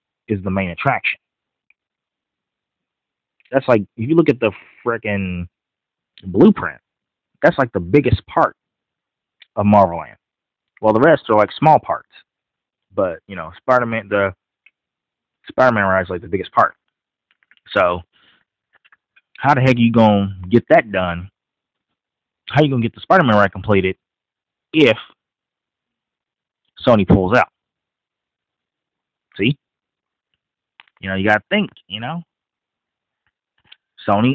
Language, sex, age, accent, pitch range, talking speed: English, male, 30-49, American, 95-125 Hz, 130 wpm